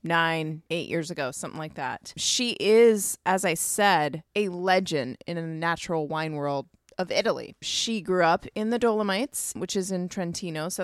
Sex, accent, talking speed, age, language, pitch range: female, American, 175 wpm, 20-39, English, 155-205 Hz